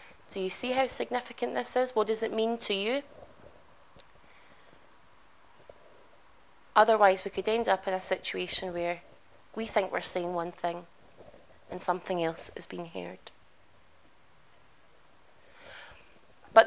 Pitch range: 190-230 Hz